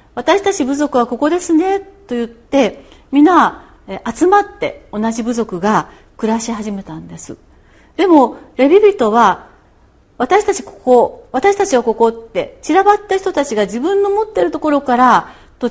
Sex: female